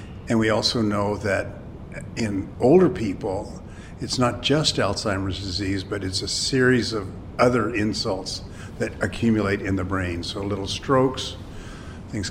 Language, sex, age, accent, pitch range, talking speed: English, male, 50-69, American, 95-115 Hz, 140 wpm